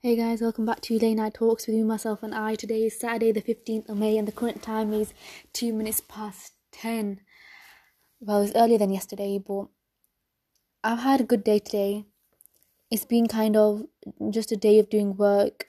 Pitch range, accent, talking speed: 205-220 Hz, British, 195 wpm